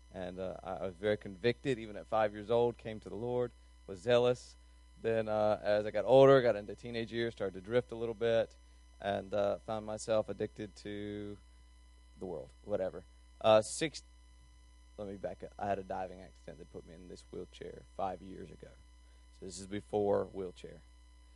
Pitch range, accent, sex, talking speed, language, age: 85-135 Hz, American, male, 190 wpm, English, 30-49